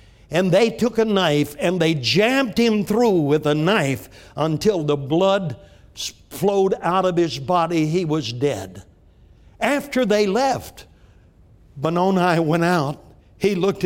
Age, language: 60-79, English